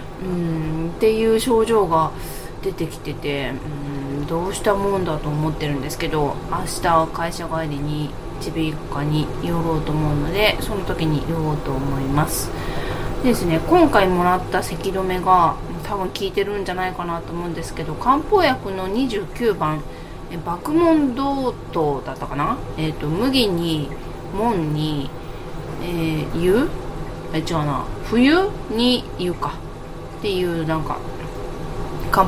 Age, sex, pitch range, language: 20-39, female, 155-230 Hz, Japanese